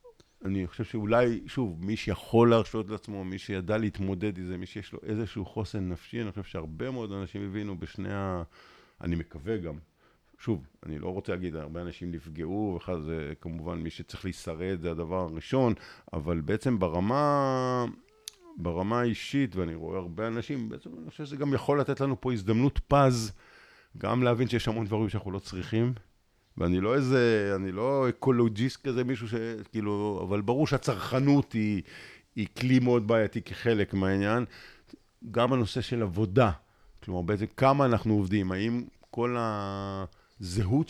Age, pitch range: 50-69, 95-125 Hz